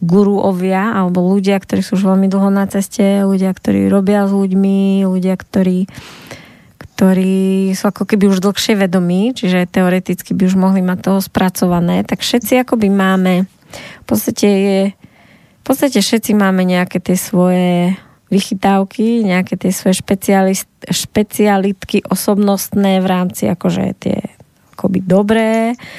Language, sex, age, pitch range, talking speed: Slovak, female, 20-39, 185-210 Hz, 135 wpm